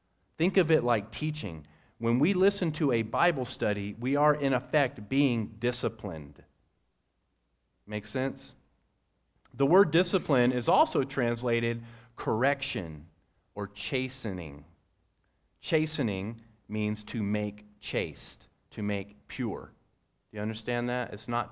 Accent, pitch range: American, 100-130 Hz